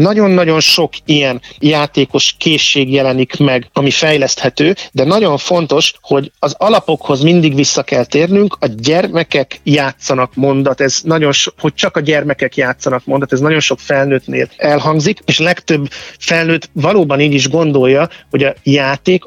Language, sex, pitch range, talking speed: Hungarian, male, 135-160 Hz, 145 wpm